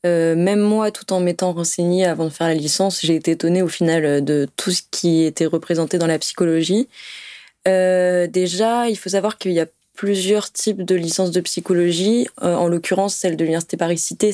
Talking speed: 200 wpm